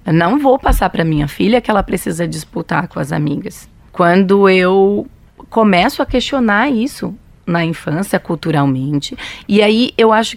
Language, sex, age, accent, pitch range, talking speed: Portuguese, female, 30-49, Brazilian, 170-215 Hz, 155 wpm